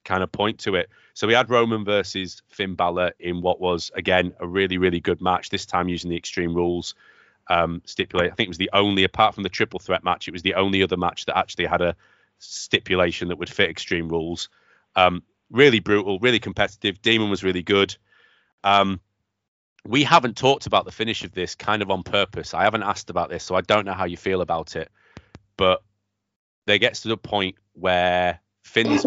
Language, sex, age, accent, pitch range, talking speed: English, male, 30-49, British, 90-105 Hz, 210 wpm